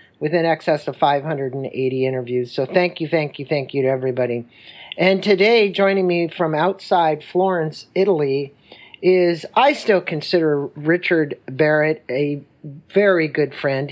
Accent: American